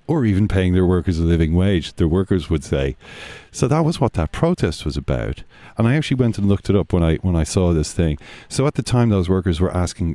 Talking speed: 255 wpm